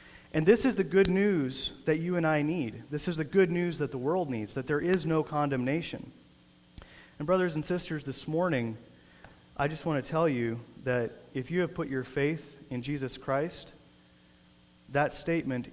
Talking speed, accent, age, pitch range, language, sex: 185 wpm, American, 30-49, 110-155 Hz, English, male